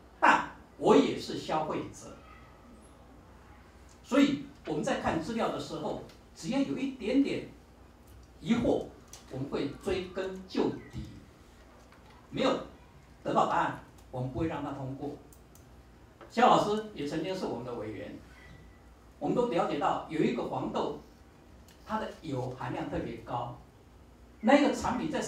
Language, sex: Chinese, male